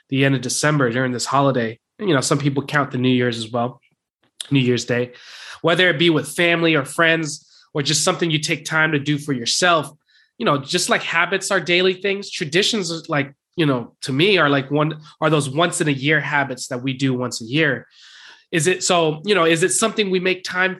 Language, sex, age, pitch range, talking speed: English, male, 20-39, 140-170 Hz, 225 wpm